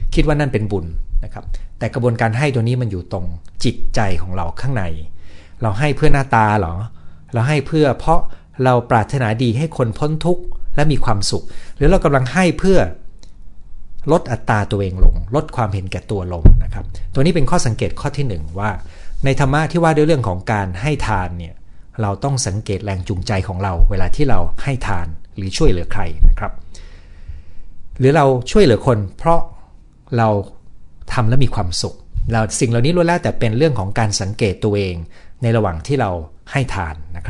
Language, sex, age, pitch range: Thai, male, 60-79, 90-130 Hz